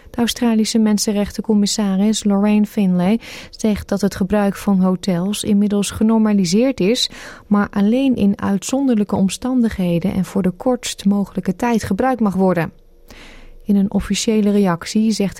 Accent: Dutch